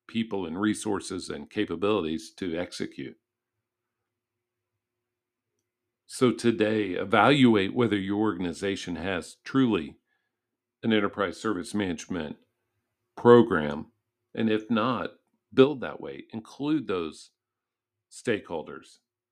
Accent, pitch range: American, 95-120 Hz